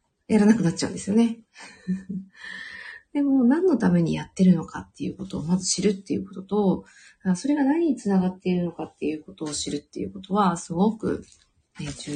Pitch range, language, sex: 185-245 Hz, Japanese, female